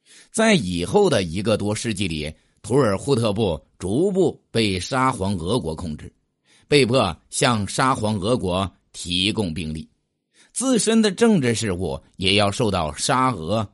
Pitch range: 90-130 Hz